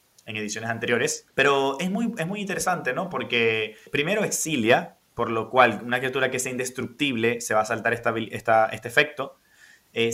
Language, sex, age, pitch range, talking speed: Spanish, male, 20-39, 115-145 Hz, 180 wpm